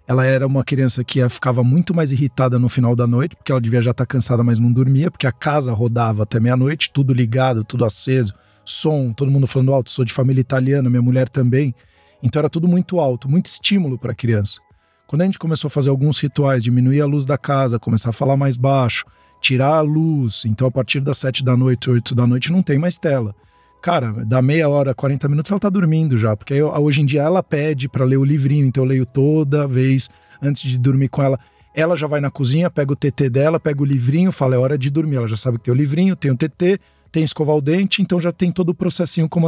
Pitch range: 125-155 Hz